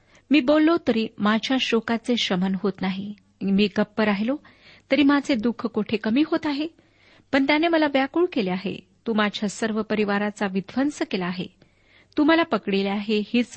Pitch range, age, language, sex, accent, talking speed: 200-245 Hz, 40-59, Marathi, female, native, 160 wpm